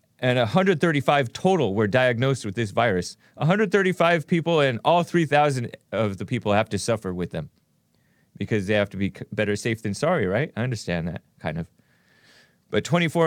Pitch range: 110-150 Hz